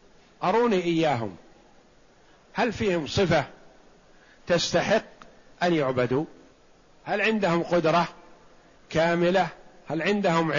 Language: Arabic